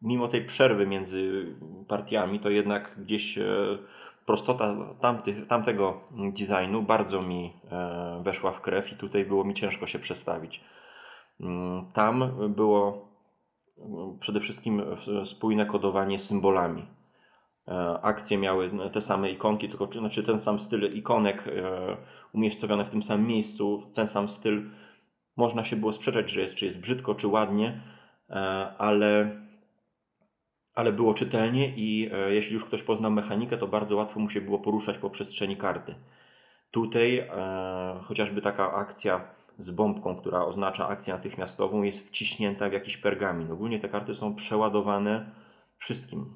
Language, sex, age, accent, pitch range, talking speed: Polish, male, 20-39, native, 95-110 Hz, 135 wpm